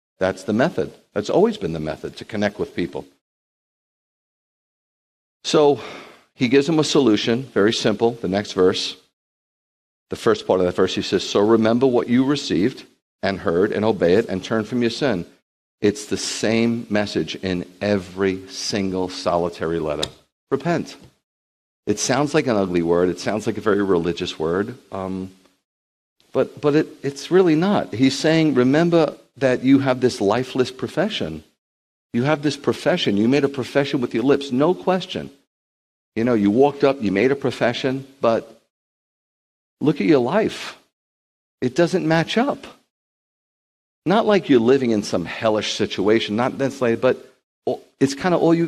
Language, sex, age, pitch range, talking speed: English, male, 50-69, 100-145 Hz, 160 wpm